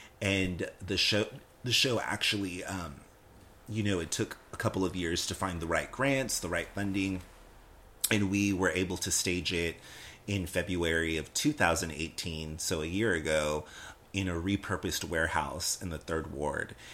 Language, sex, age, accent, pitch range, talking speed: English, male, 30-49, American, 85-100 Hz, 165 wpm